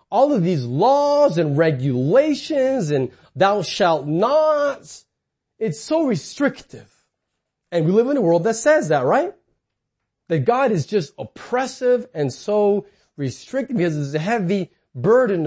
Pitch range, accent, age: 150-220 Hz, American, 30-49